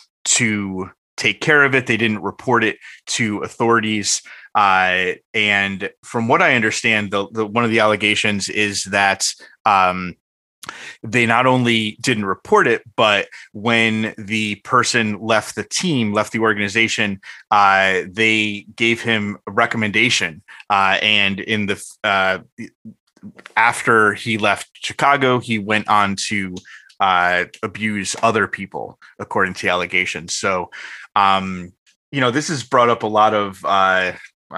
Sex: male